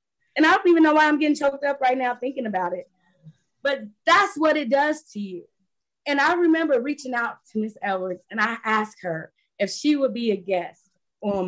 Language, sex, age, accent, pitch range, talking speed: English, female, 20-39, American, 205-300 Hz, 215 wpm